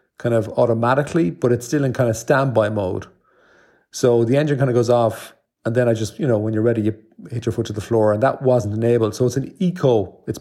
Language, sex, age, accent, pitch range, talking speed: English, male, 40-59, Irish, 110-135 Hz, 250 wpm